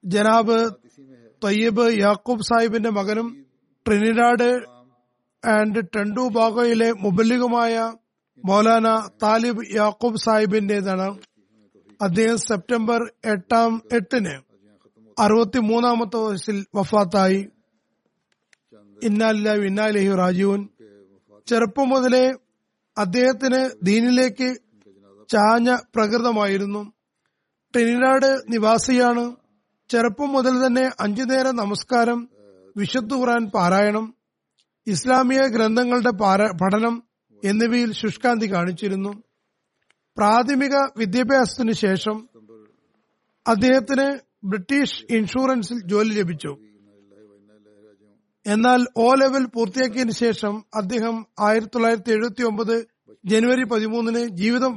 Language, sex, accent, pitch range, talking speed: Malayalam, male, native, 200-240 Hz, 70 wpm